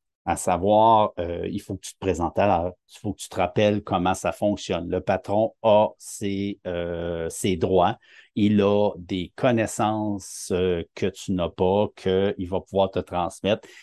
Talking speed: 175 wpm